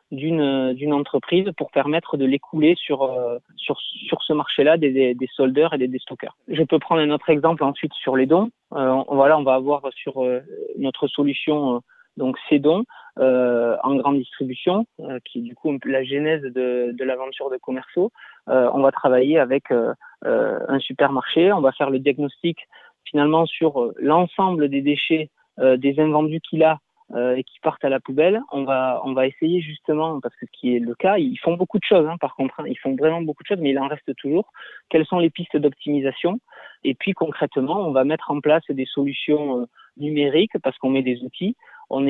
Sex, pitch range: male, 130-160 Hz